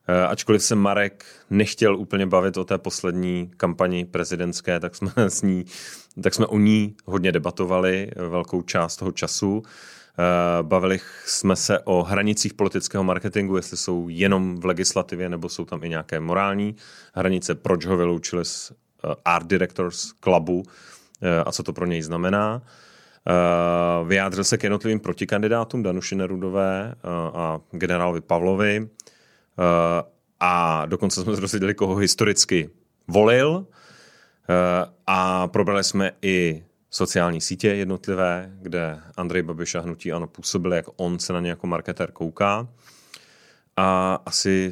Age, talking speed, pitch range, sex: 30-49, 130 wpm, 85-95 Hz, male